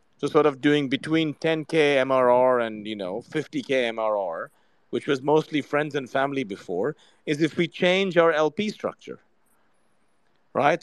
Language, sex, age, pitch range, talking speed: English, male, 40-59, 130-170 Hz, 150 wpm